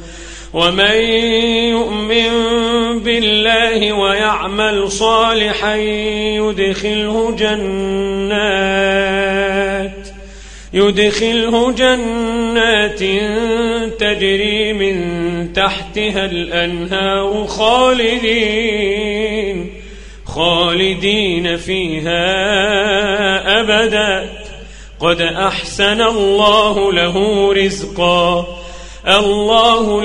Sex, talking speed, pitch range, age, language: male, 45 wpm, 195-230 Hz, 40-59, Arabic